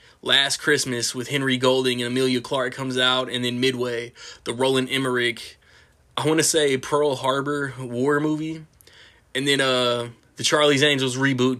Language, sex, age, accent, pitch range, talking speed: English, male, 20-39, American, 120-130 Hz, 160 wpm